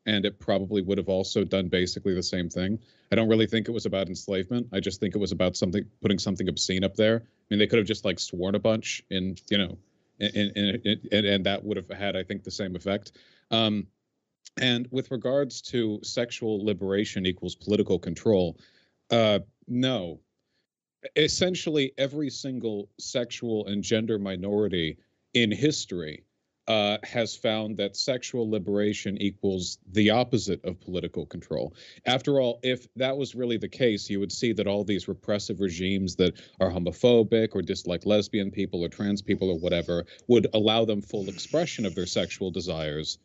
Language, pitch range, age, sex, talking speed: English, 95-115 Hz, 40-59, male, 170 wpm